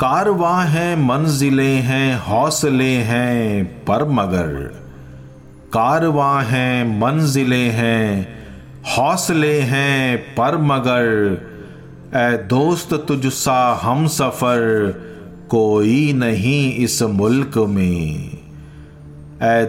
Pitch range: 105-135 Hz